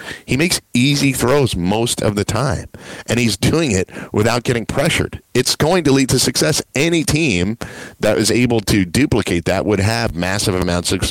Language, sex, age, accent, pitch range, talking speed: English, male, 40-59, American, 85-105 Hz, 180 wpm